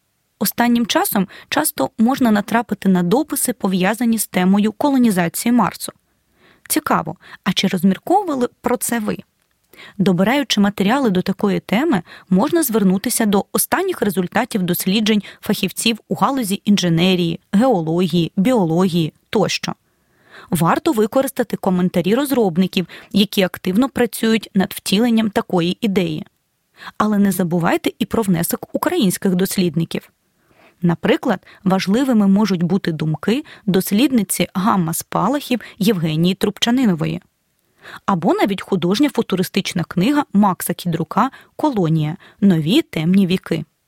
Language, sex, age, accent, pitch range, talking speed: Ukrainian, female, 20-39, native, 180-235 Hz, 105 wpm